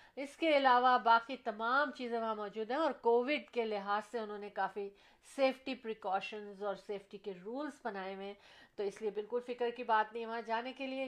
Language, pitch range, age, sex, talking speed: Urdu, 220-275 Hz, 50-69, female, 200 wpm